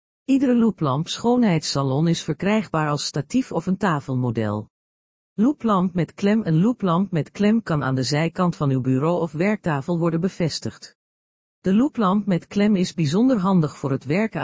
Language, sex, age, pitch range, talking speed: Dutch, female, 50-69, 145-200 Hz, 160 wpm